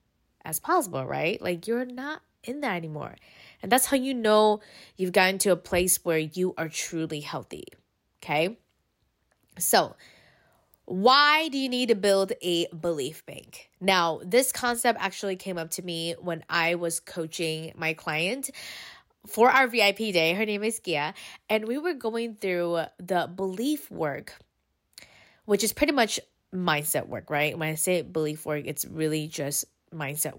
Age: 20-39